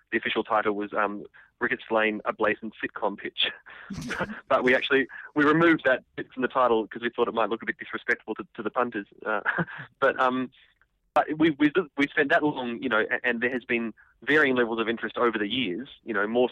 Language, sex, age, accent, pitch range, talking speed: English, male, 20-39, Australian, 100-120 Hz, 220 wpm